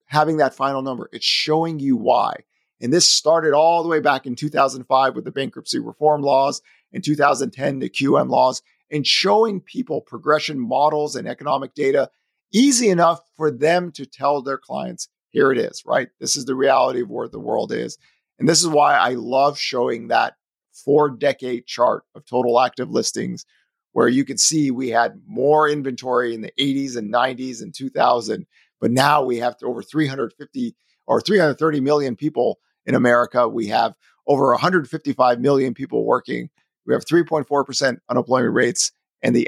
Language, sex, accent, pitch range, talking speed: English, male, American, 125-155 Hz, 170 wpm